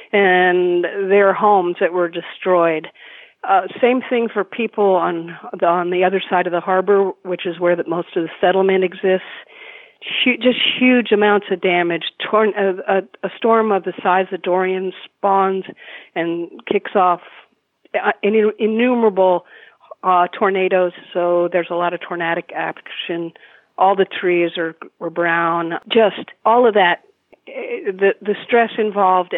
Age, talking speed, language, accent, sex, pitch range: 50-69, 155 wpm, English, American, female, 170-205 Hz